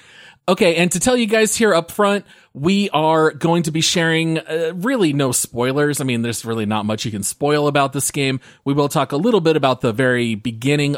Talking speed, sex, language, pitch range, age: 225 wpm, male, English, 120-160 Hz, 30-49